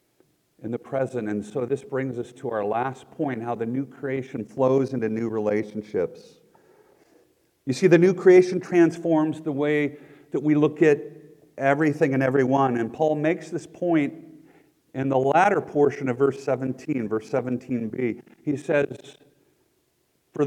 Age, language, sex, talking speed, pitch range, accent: 50-69, English, male, 150 wpm, 125-160 Hz, American